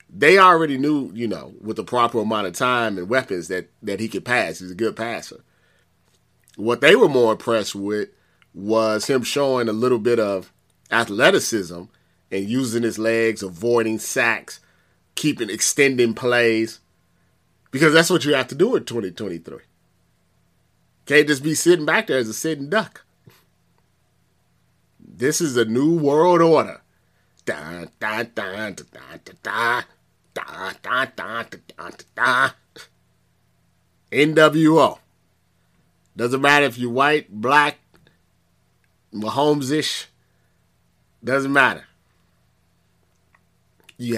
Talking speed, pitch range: 130 wpm, 90-130 Hz